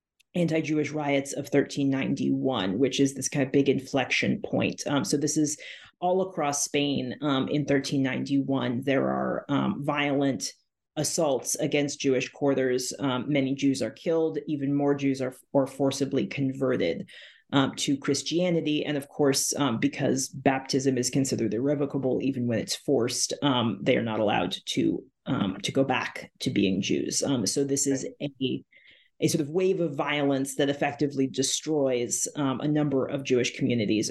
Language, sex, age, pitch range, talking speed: English, female, 30-49, 135-160 Hz, 160 wpm